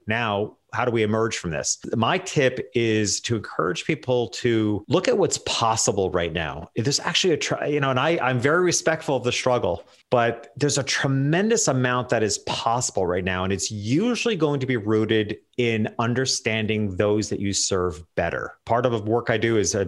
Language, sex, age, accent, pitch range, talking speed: English, male, 40-59, American, 100-125 Hz, 195 wpm